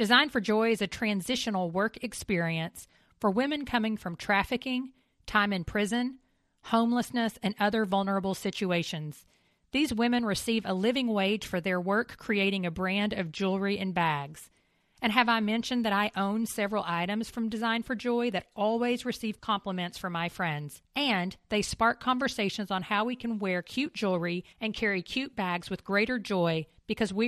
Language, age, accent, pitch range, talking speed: English, 40-59, American, 180-230 Hz, 170 wpm